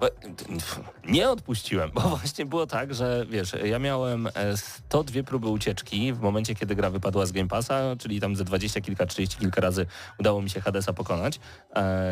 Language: Polish